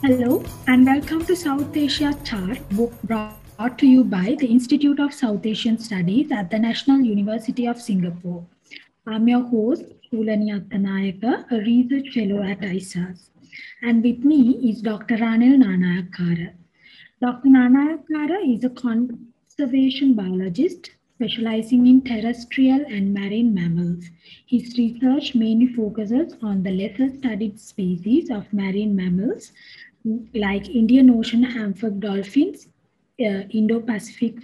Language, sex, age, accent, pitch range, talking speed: English, female, 20-39, Indian, 205-260 Hz, 125 wpm